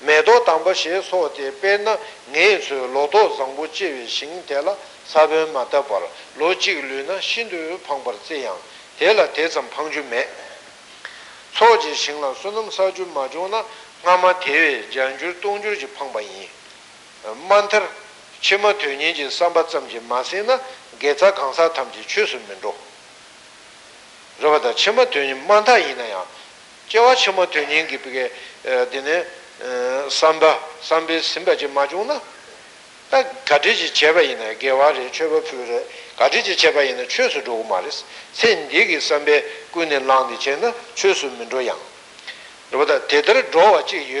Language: Italian